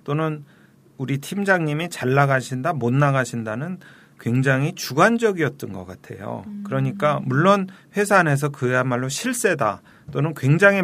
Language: Korean